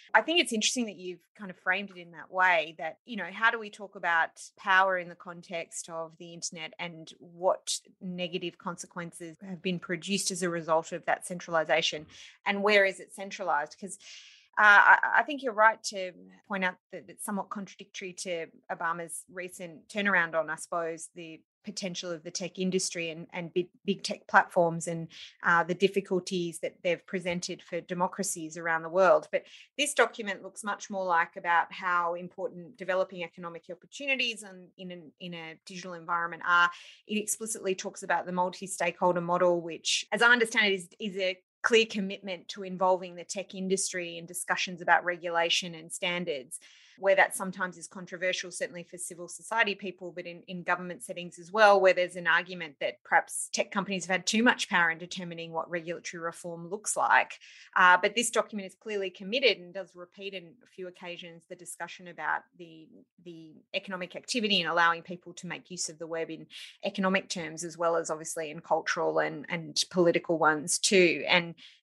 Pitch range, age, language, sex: 170-195 Hz, 30-49, English, female